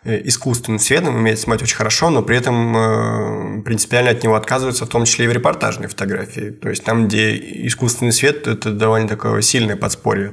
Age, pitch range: 20-39, 110-125 Hz